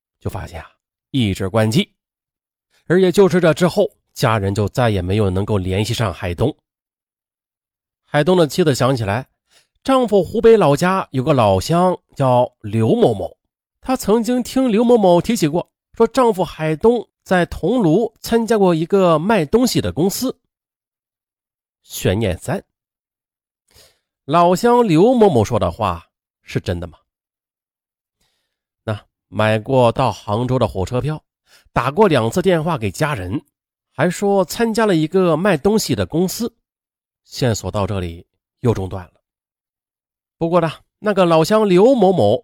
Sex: male